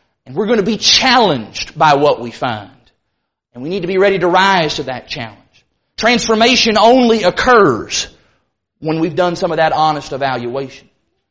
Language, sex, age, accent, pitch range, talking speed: English, male, 30-49, American, 210-295 Hz, 170 wpm